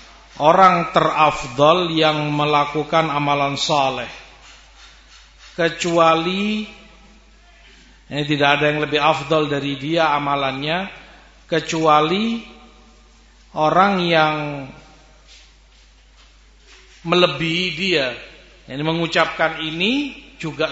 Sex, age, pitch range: male, 40-59, 135-165 Hz